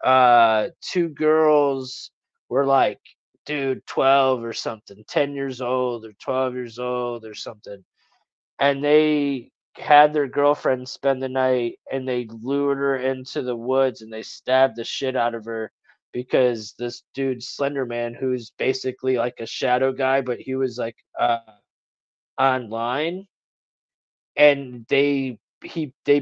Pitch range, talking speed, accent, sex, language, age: 120-145 Hz, 140 wpm, American, male, English, 20-39